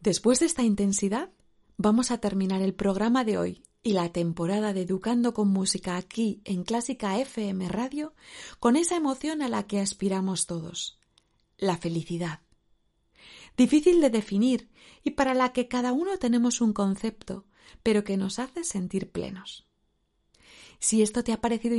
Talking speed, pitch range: 155 wpm, 195-255 Hz